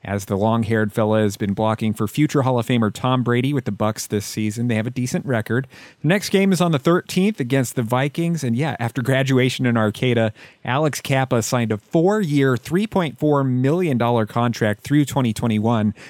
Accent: American